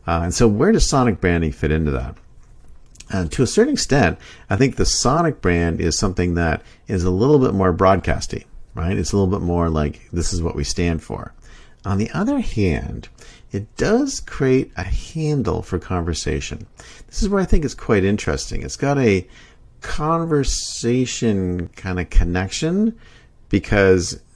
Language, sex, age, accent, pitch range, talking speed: English, male, 50-69, American, 85-115 Hz, 170 wpm